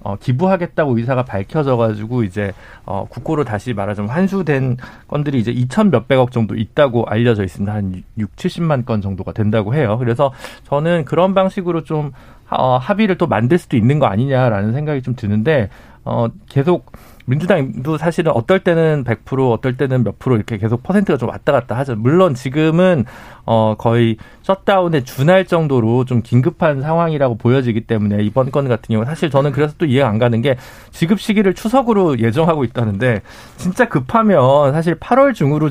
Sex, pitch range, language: male, 115-165 Hz, Korean